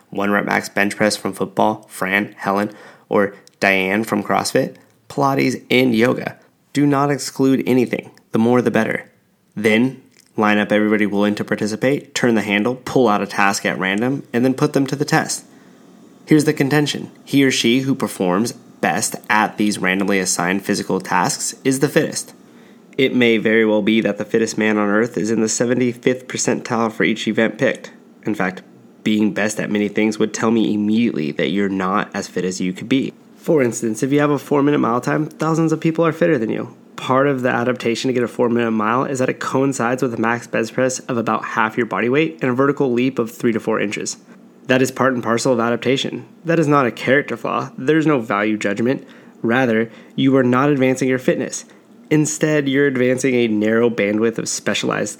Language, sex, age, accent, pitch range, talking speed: English, male, 20-39, American, 105-135 Hz, 205 wpm